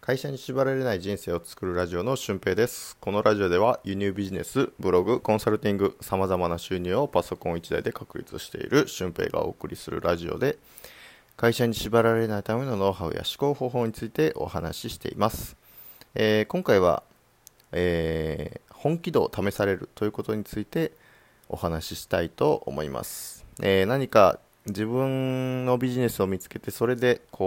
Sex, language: male, Japanese